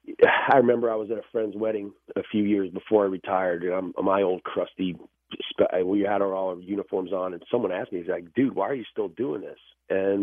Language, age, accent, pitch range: English, 40-59, American, 95-115 Hz